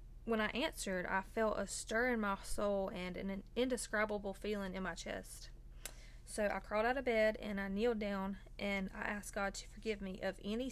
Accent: American